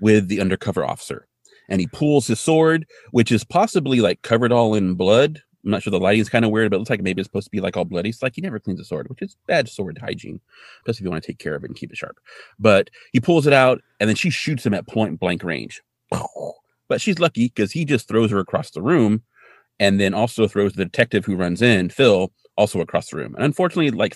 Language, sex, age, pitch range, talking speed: English, male, 30-49, 100-130 Hz, 260 wpm